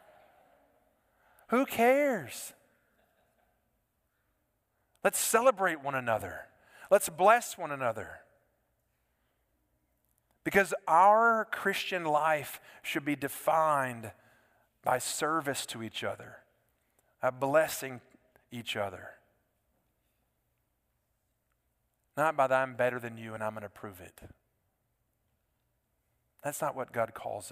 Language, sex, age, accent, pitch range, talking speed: English, male, 40-59, American, 105-140 Hz, 95 wpm